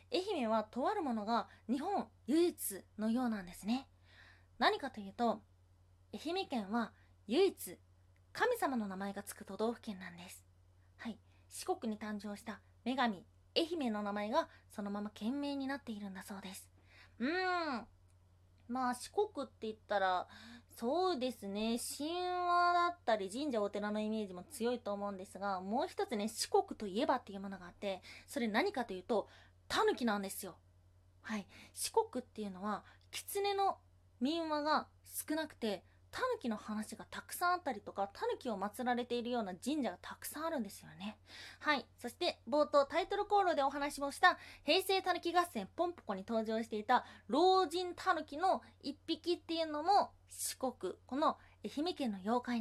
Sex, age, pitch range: female, 20-39, 200-310 Hz